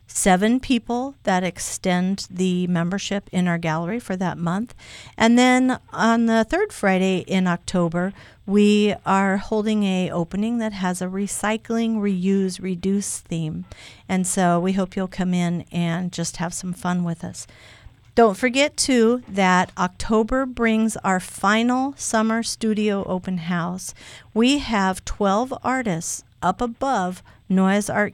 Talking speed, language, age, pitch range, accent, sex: 140 wpm, English, 50-69, 175-220 Hz, American, female